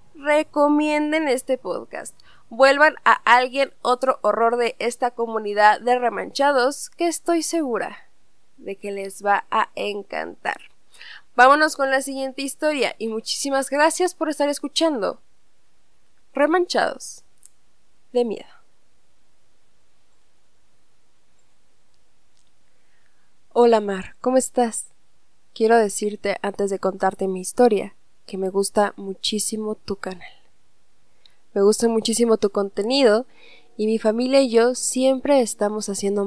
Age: 20-39